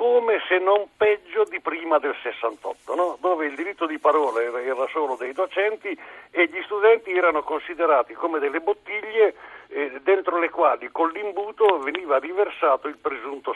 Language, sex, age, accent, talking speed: Italian, male, 60-79, native, 160 wpm